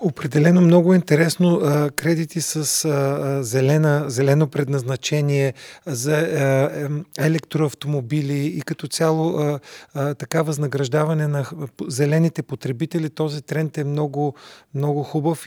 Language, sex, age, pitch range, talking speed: Bulgarian, male, 40-59, 140-155 Hz, 95 wpm